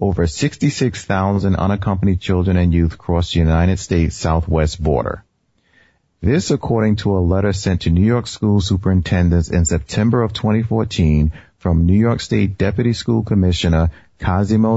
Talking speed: 140 wpm